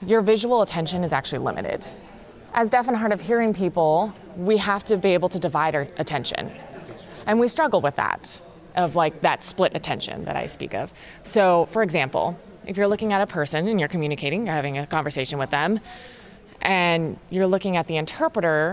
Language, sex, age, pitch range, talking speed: English, female, 20-39, 160-215 Hz, 190 wpm